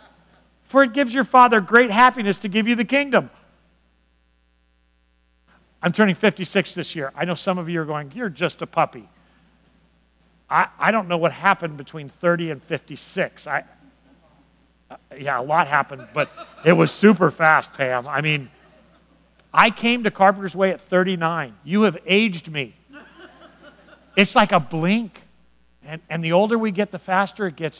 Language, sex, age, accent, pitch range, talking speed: English, male, 50-69, American, 155-210 Hz, 165 wpm